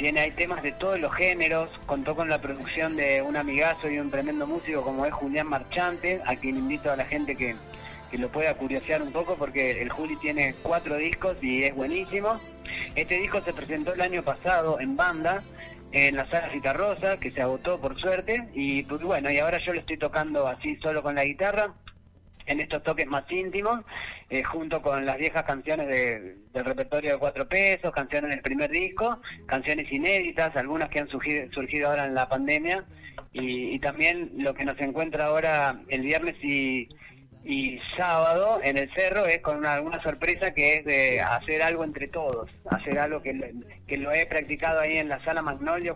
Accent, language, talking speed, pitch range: Argentinian, Spanish, 195 wpm, 135-165 Hz